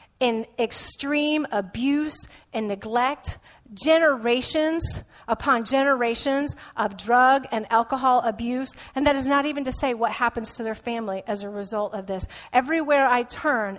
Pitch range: 215-270 Hz